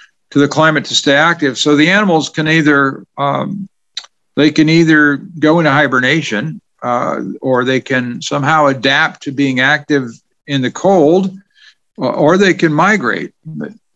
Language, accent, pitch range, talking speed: English, American, 135-170 Hz, 145 wpm